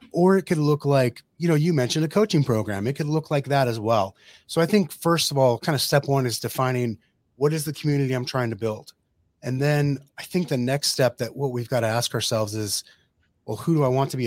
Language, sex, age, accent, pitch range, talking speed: English, male, 30-49, American, 115-135 Hz, 255 wpm